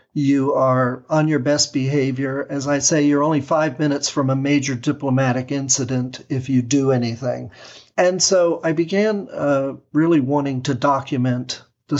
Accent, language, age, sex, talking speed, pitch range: American, English, 50-69, male, 160 wpm, 125-150 Hz